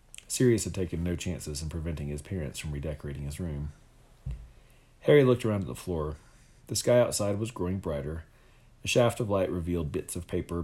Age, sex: 40-59, male